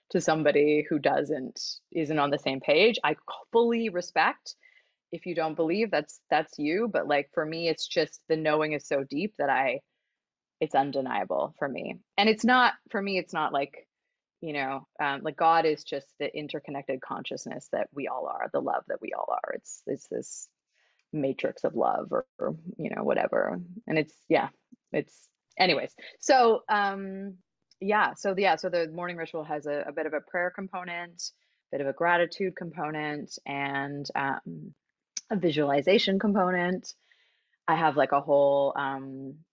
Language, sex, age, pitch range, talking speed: English, female, 20-39, 140-185 Hz, 175 wpm